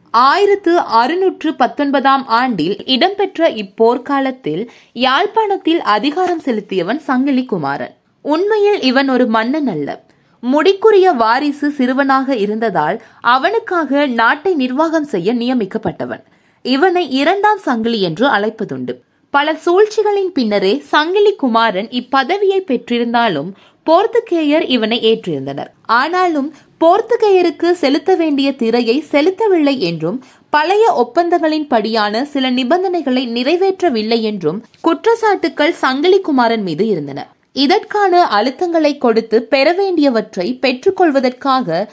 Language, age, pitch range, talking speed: Tamil, 20-39, 230-345 Hz, 90 wpm